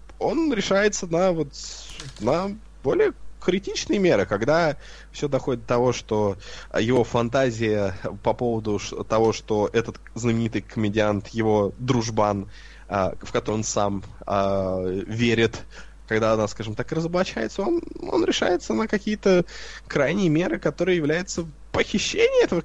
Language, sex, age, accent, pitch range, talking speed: Russian, male, 20-39, native, 110-180 Hz, 120 wpm